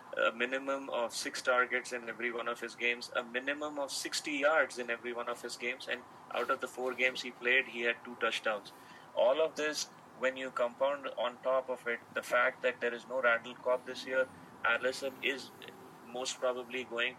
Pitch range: 115-130 Hz